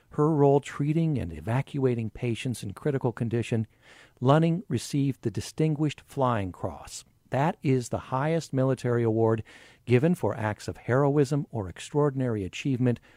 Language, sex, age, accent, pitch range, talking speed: English, male, 50-69, American, 110-150 Hz, 130 wpm